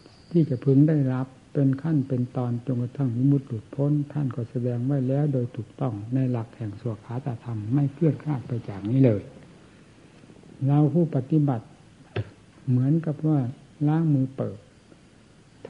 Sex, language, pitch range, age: male, Thai, 125-145 Hz, 60-79